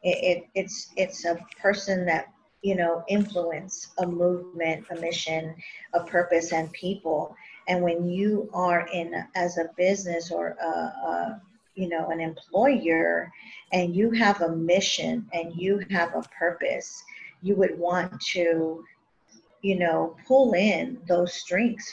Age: 50-69